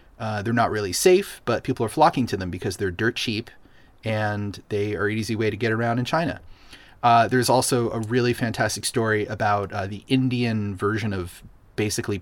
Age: 30-49